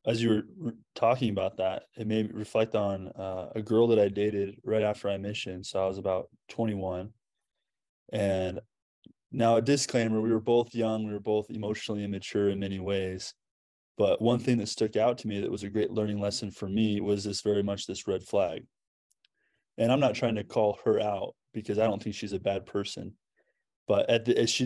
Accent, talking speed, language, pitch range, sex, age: American, 210 wpm, English, 100-115 Hz, male, 20-39